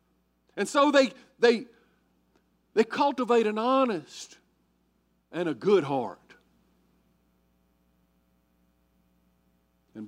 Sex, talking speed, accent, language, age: male, 75 wpm, American, English, 50-69